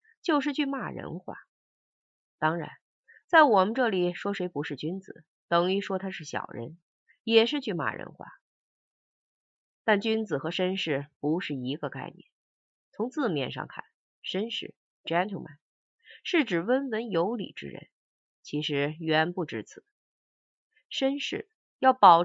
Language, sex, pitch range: Chinese, female, 150-225 Hz